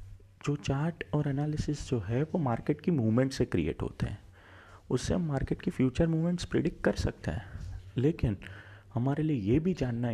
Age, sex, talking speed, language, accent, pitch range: 30-49, male, 180 wpm, Hindi, native, 95-140 Hz